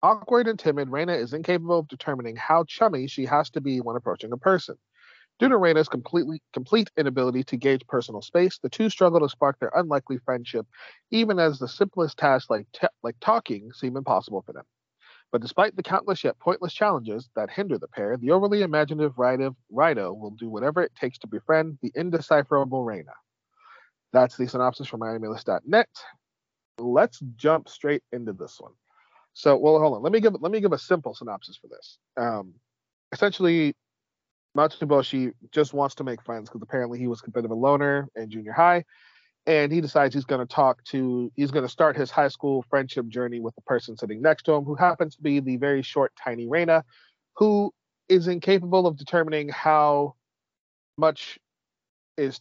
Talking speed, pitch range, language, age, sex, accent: 185 wpm, 125-170 Hz, English, 40-59, male, American